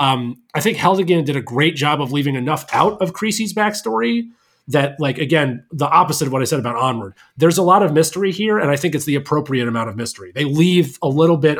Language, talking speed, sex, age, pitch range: English, 240 wpm, male, 30-49, 135-180 Hz